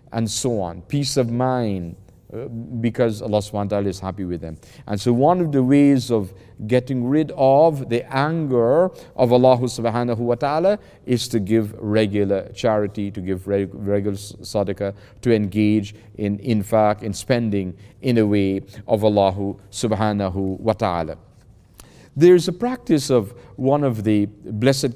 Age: 40-59